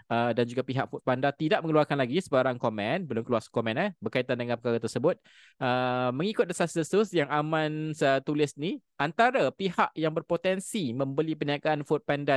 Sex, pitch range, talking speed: male, 120-150 Hz, 160 wpm